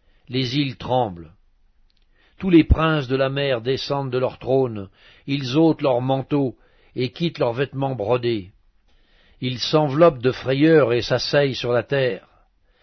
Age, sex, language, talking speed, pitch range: 60-79, male, French, 145 wpm, 115-150 Hz